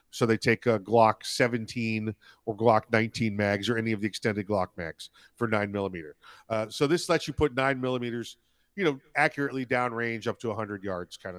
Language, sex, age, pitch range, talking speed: English, male, 40-59, 115-140 Hz, 200 wpm